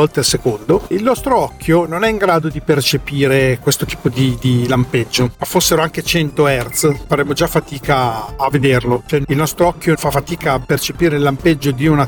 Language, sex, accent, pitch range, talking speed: Italian, male, native, 140-170 Hz, 190 wpm